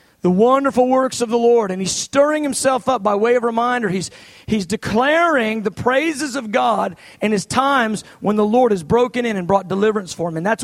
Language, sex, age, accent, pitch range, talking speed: English, male, 40-59, American, 225-285 Hz, 215 wpm